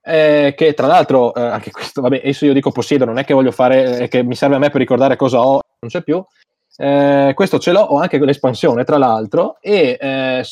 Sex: male